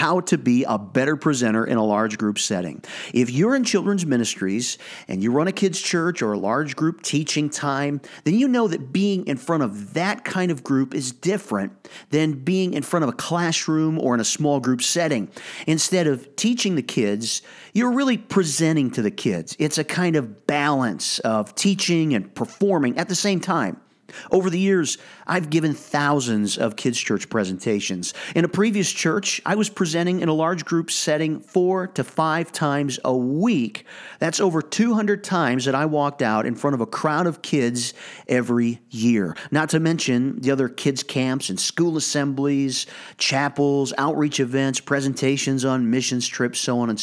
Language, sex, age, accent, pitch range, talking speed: English, male, 40-59, American, 125-180 Hz, 185 wpm